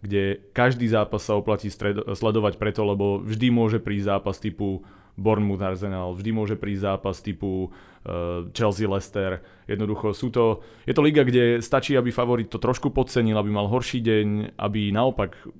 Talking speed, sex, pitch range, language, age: 165 wpm, male, 100-110 Hz, Slovak, 20-39